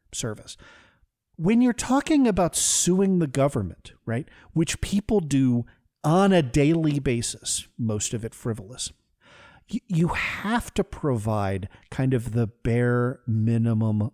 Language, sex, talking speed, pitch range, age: English, male, 125 wpm, 115-175 Hz, 40-59